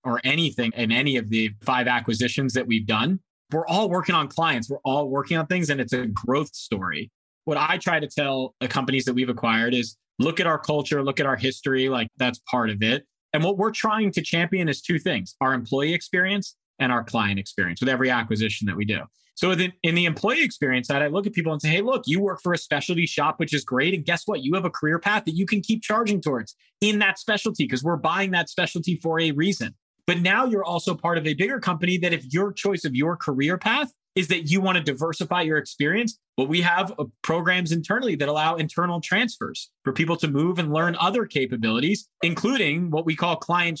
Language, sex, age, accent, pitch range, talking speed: English, male, 30-49, American, 135-180 Hz, 230 wpm